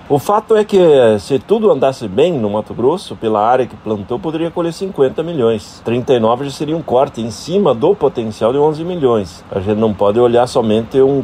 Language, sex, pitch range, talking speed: Portuguese, male, 105-135 Hz, 205 wpm